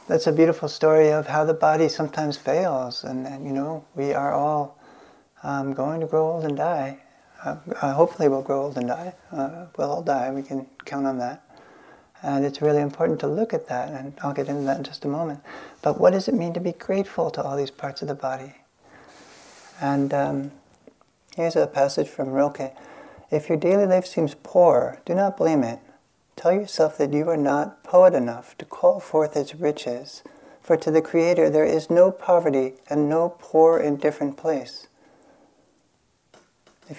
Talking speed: 190 wpm